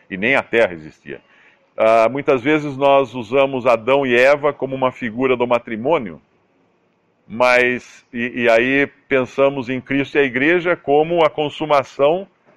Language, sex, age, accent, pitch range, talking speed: Portuguese, male, 50-69, Brazilian, 115-145 Hz, 150 wpm